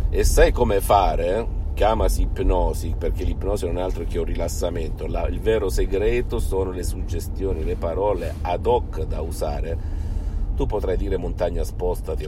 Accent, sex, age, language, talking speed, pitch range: native, male, 50-69, Italian, 150 wpm, 85-105 Hz